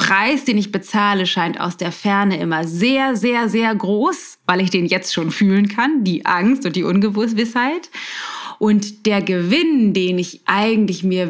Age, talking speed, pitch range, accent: 20-39, 175 wpm, 180-230 Hz, German